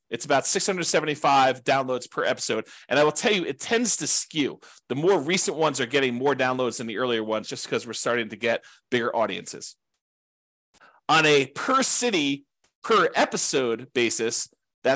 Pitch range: 125-160 Hz